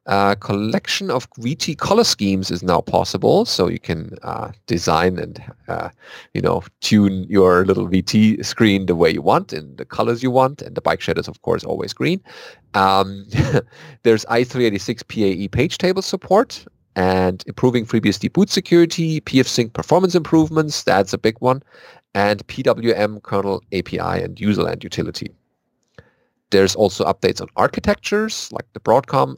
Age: 30-49